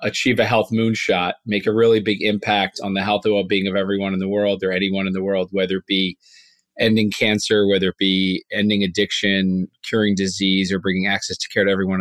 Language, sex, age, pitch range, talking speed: English, male, 30-49, 100-120 Hz, 215 wpm